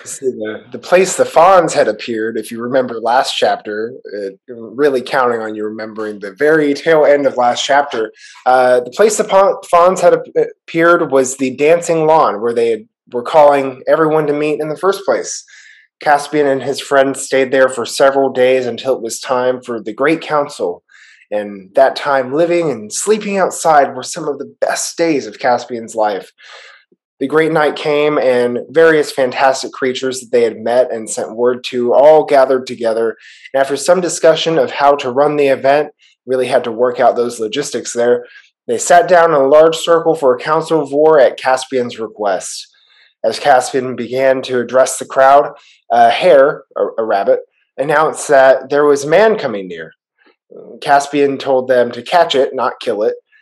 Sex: male